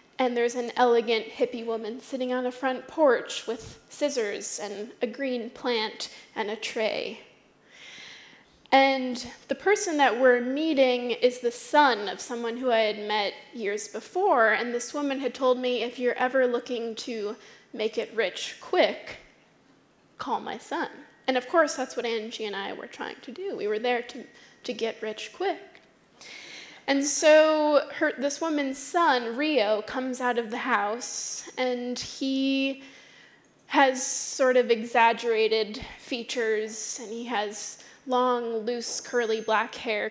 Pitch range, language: 230-270 Hz, English